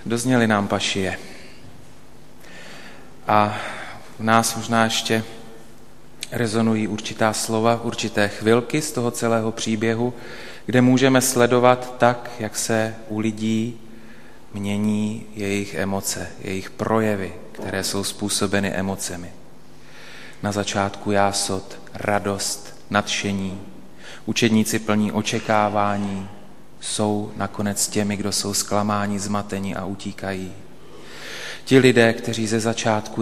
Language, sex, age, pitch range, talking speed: Slovak, male, 30-49, 100-110 Hz, 100 wpm